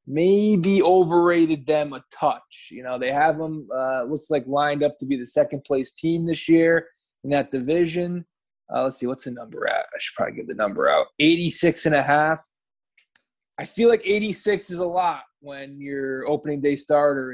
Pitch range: 140-165 Hz